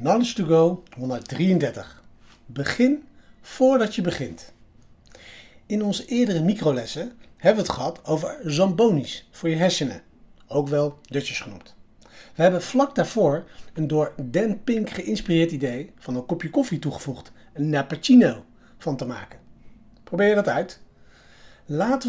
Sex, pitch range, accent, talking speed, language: male, 140-205 Hz, Dutch, 135 wpm, Dutch